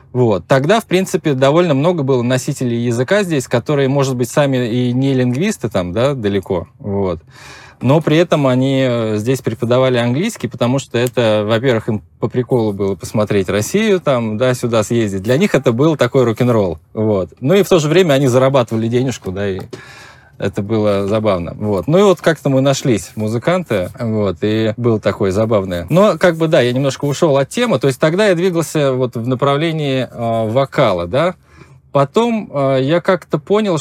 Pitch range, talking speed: 115-155 Hz, 170 wpm